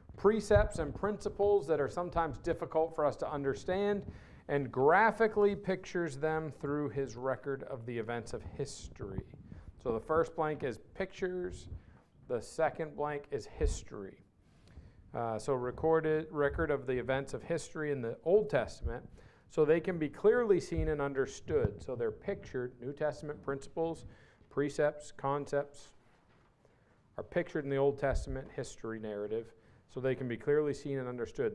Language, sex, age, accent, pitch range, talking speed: English, male, 50-69, American, 130-165 Hz, 150 wpm